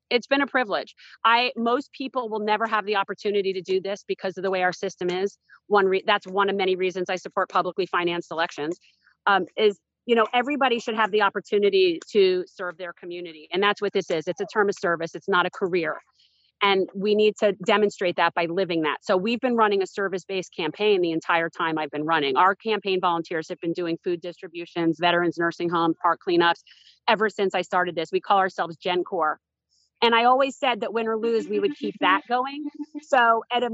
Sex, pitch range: female, 180-235 Hz